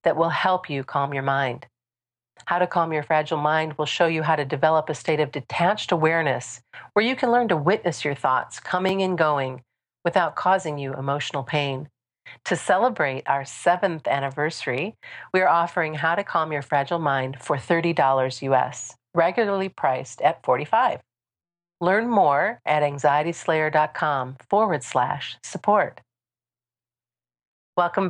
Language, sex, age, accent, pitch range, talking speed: English, female, 40-59, American, 140-175 Hz, 145 wpm